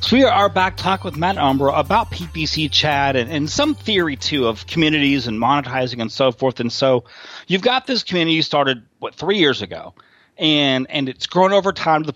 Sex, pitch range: male, 125-165 Hz